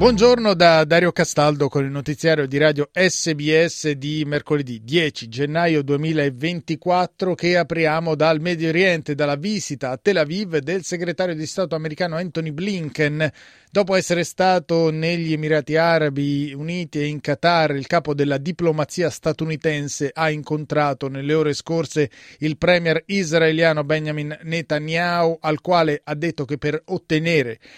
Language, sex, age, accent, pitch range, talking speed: Italian, male, 30-49, native, 145-175 Hz, 140 wpm